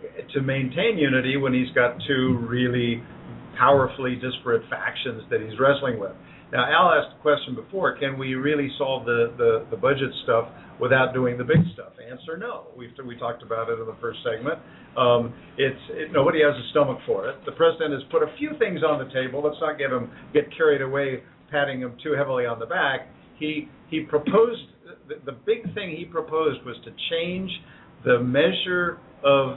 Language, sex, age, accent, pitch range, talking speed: English, male, 50-69, American, 130-185 Hz, 190 wpm